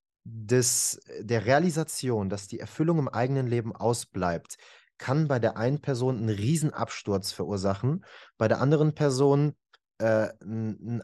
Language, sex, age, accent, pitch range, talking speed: German, male, 30-49, German, 105-130 Hz, 125 wpm